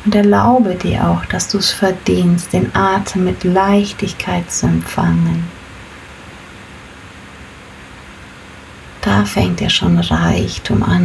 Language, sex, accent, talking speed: German, female, German, 110 wpm